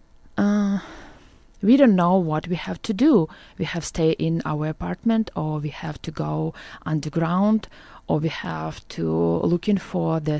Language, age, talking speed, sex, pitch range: English, 20-39, 155 wpm, female, 155-195 Hz